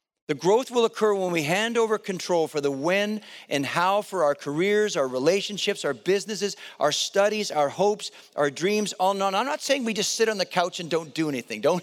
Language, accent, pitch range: English, American, 165-210 Hz